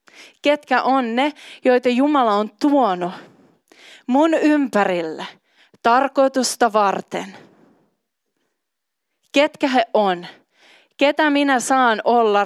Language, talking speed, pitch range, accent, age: Finnish, 85 wpm, 195-255 Hz, native, 30-49